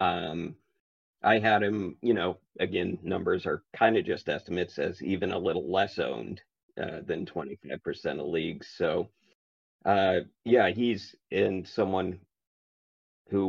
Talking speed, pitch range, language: 140 wpm, 90-105 Hz, English